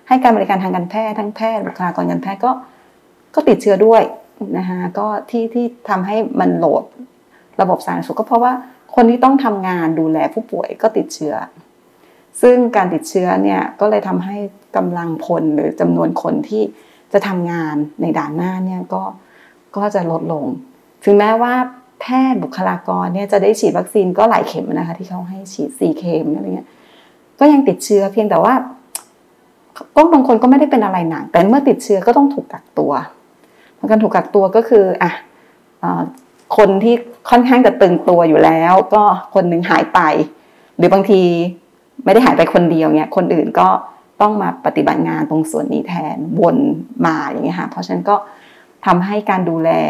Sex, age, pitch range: female, 30-49, 170-225 Hz